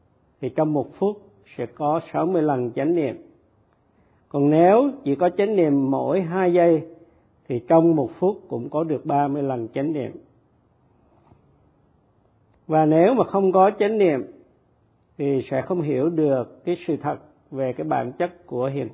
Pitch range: 125-165 Hz